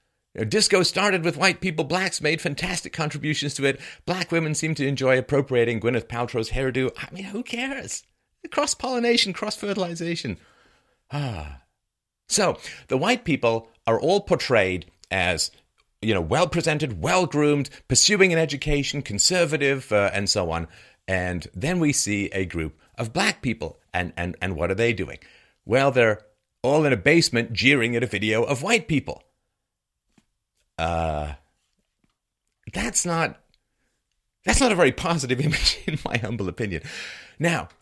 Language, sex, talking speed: English, male, 145 wpm